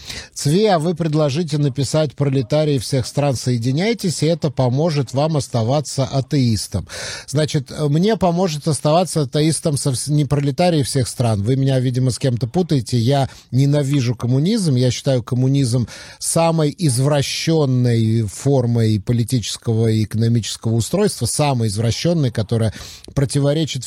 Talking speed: 120 wpm